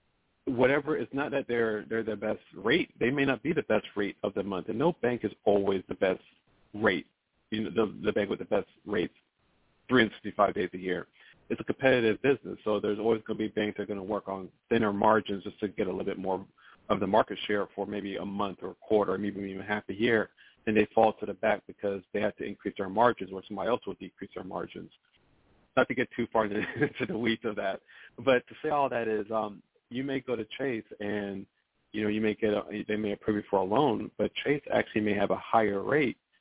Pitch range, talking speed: 100-115 Hz, 240 wpm